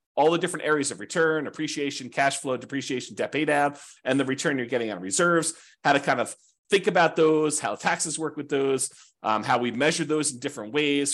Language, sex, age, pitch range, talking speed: English, male, 40-59, 130-165 Hz, 215 wpm